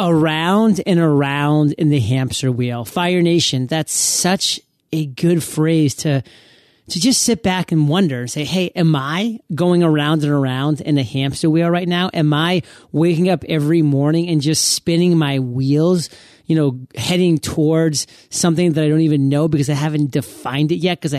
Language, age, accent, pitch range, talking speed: English, 30-49, American, 140-175 Hz, 180 wpm